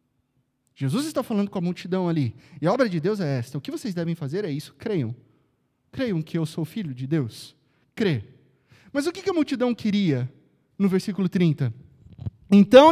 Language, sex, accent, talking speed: Portuguese, male, Brazilian, 185 wpm